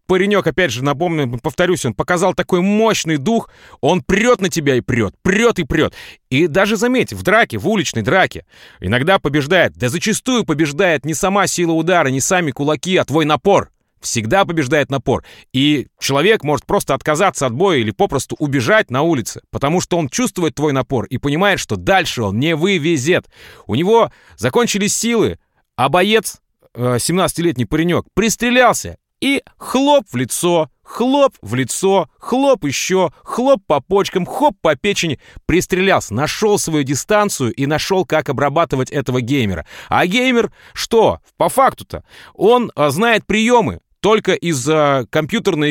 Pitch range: 140-205 Hz